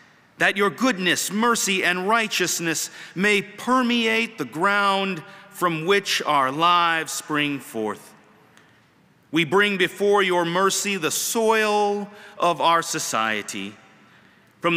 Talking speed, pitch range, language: 110 wpm, 175-225 Hz, English